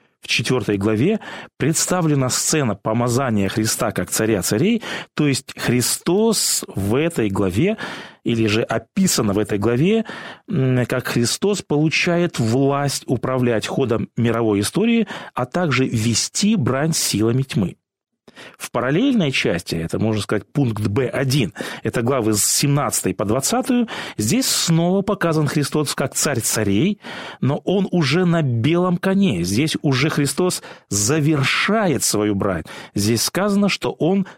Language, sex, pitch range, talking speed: Russian, male, 110-180 Hz, 125 wpm